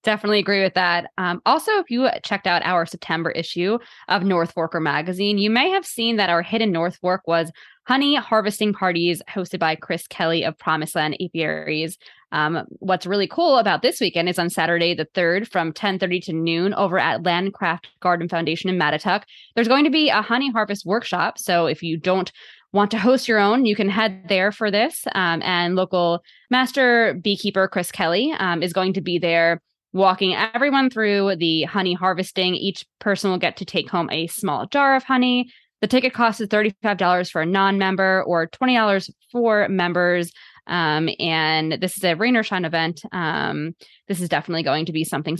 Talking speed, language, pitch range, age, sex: 190 wpm, English, 170-210 Hz, 20-39, female